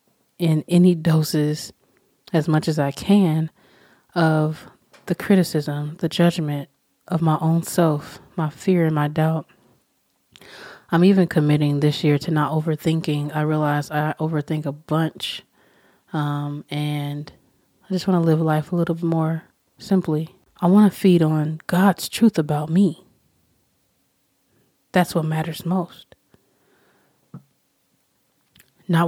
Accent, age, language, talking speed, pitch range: American, 20-39, English, 130 wpm, 150-170 Hz